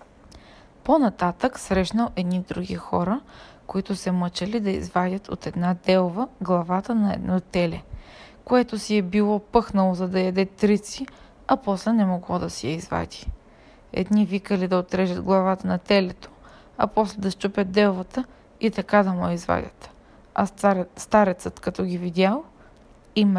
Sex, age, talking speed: female, 20-39, 145 wpm